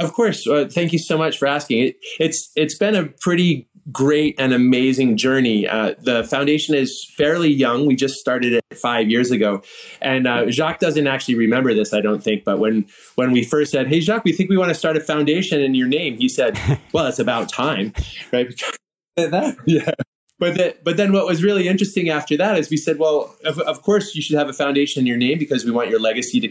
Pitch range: 125-165 Hz